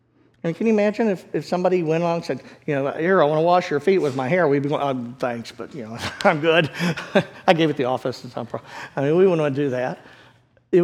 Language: English